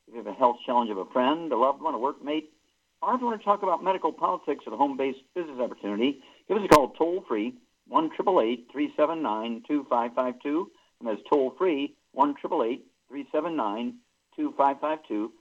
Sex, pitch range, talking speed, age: male, 120-175 Hz, 155 wpm, 60-79